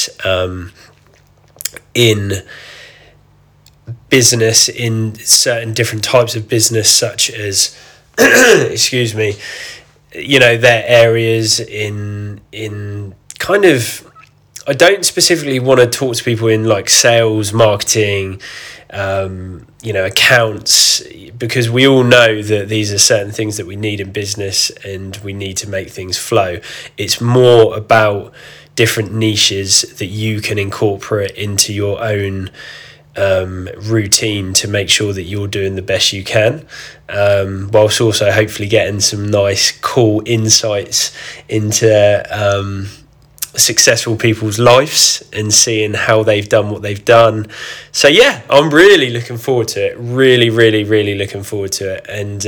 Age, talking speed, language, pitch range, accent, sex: 20-39, 135 wpm, English, 100-115 Hz, British, male